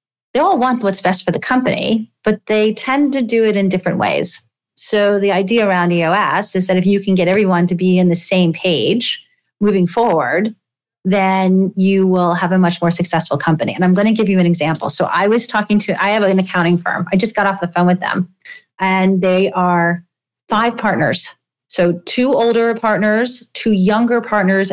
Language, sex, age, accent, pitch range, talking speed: English, female, 30-49, American, 180-220 Hz, 205 wpm